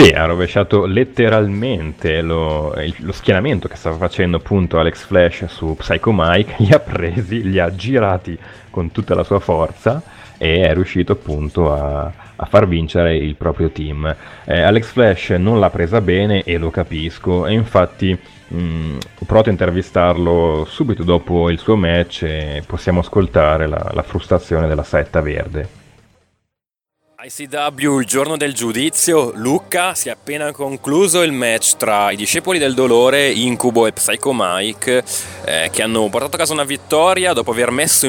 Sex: male